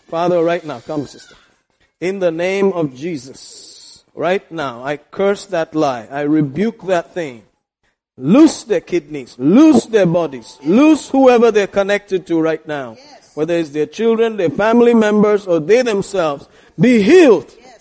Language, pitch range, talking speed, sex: English, 170-225 Hz, 150 wpm, male